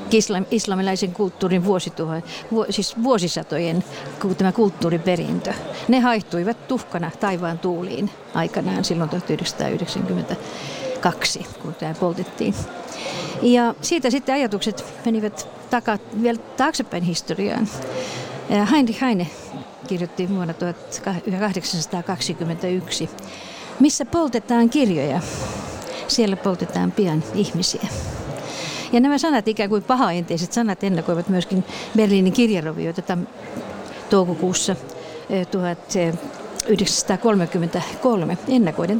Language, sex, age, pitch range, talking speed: Finnish, female, 50-69, 175-230 Hz, 85 wpm